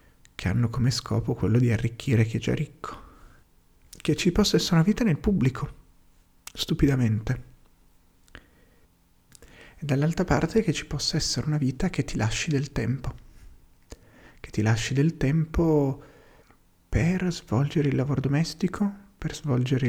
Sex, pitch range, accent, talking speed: male, 110-145 Hz, native, 140 wpm